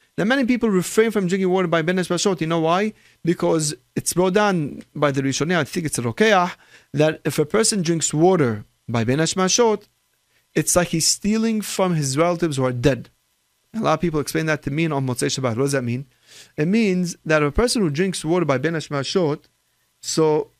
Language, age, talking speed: English, 30-49, 210 wpm